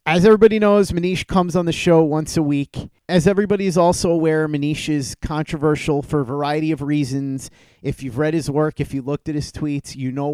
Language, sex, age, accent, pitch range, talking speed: English, male, 30-49, American, 130-165 Hz, 215 wpm